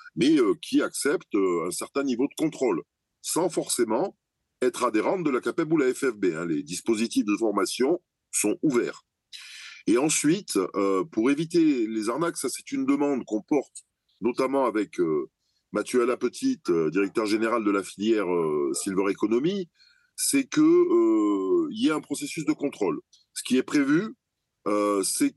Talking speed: 165 wpm